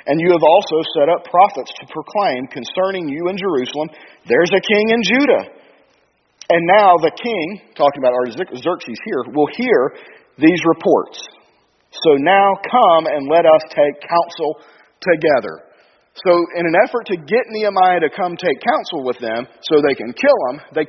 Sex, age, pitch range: male, 40-59, 150-210 Hz